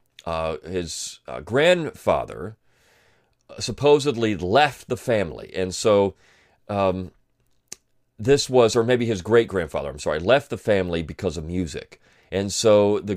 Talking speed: 130 wpm